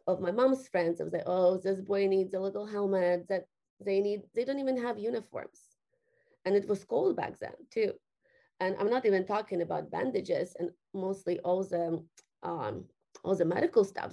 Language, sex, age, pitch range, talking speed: English, female, 20-39, 190-270 Hz, 190 wpm